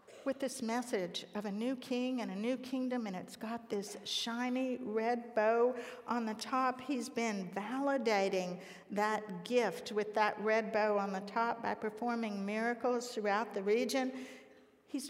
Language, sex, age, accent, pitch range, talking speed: English, female, 50-69, American, 200-240 Hz, 160 wpm